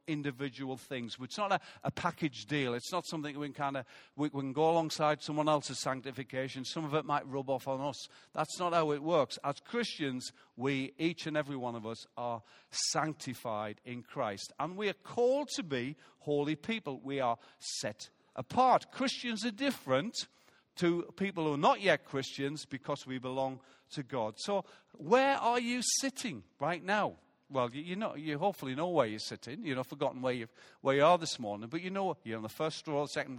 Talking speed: 195 wpm